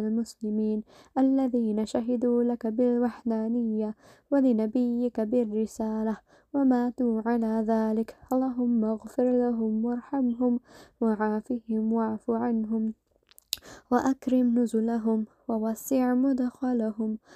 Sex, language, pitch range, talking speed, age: female, English, 225-250 Hz, 75 wpm, 10-29